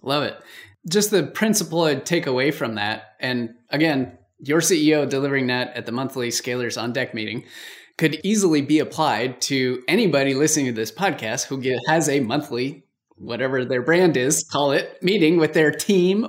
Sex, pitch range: male, 145-200 Hz